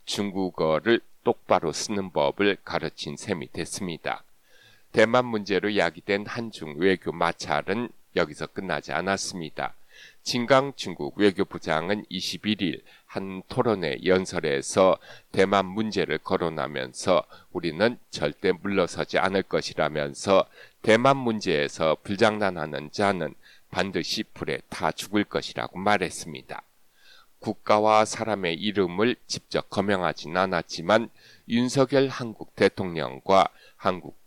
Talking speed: 90 wpm